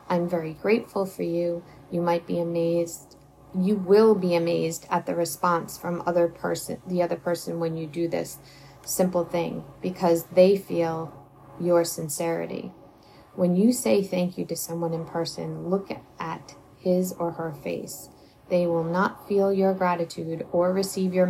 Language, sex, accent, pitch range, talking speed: English, female, American, 165-185 Hz, 160 wpm